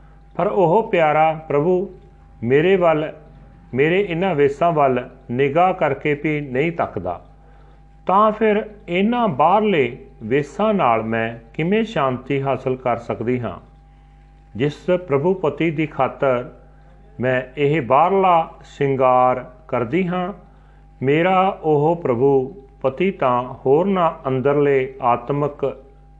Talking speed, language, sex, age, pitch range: 110 wpm, Punjabi, male, 40-59, 130-175 Hz